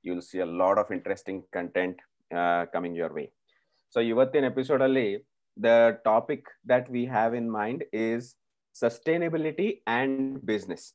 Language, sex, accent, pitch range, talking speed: Kannada, male, native, 95-120 Hz, 155 wpm